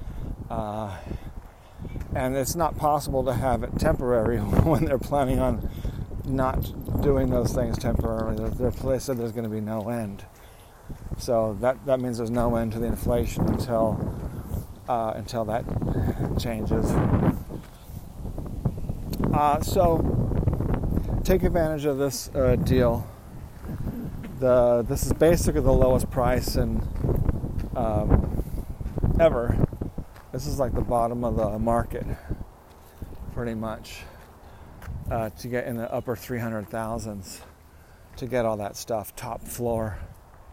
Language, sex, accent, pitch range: English, male, American, 105-120 Hz